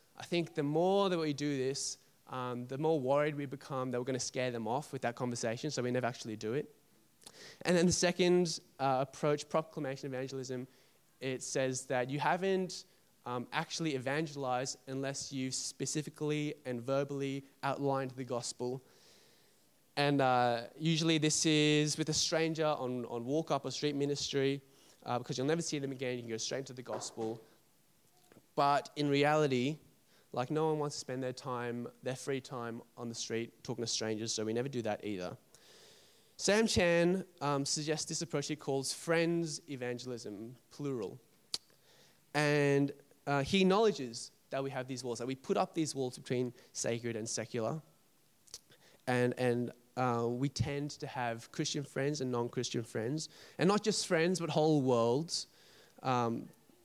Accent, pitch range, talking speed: Australian, 125-155 Hz, 165 wpm